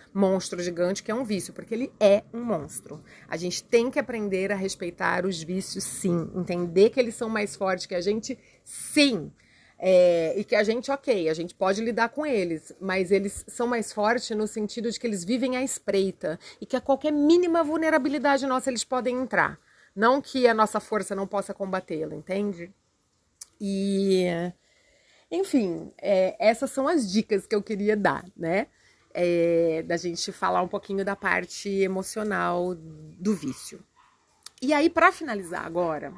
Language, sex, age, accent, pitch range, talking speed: Portuguese, female, 30-49, Brazilian, 185-235 Hz, 170 wpm